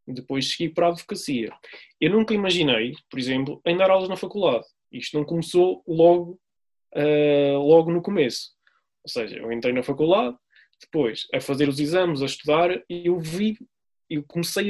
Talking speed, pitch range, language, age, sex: 165 wpm, 150-190 Hz, Portuguese, 20-39, male